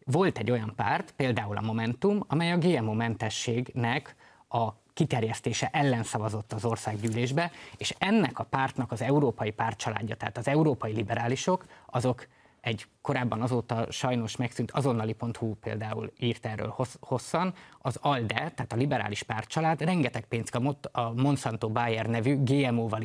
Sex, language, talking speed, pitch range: male, Hungarian, 135 wpm, 115-145 Hz